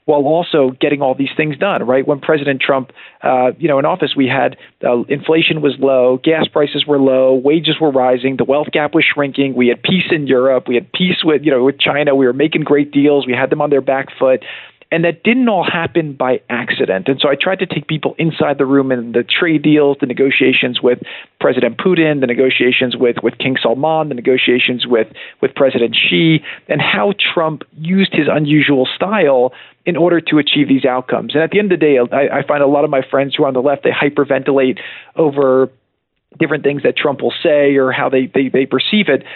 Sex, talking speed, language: male, 225 wpm, English